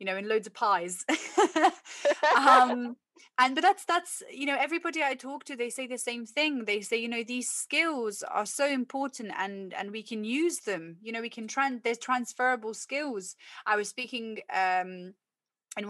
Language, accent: English, British